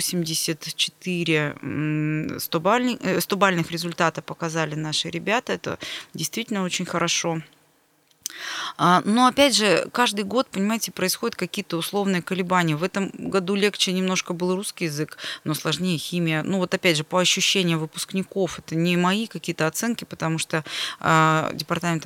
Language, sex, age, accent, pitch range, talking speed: Russian, female, 20-39, native, 160-195 Hz, 130 wpm